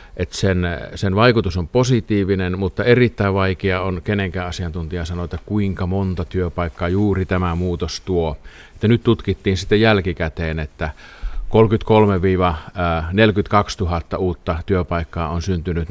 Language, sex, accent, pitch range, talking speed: Finnish, male, native, 85-105 Hz, 120 wpm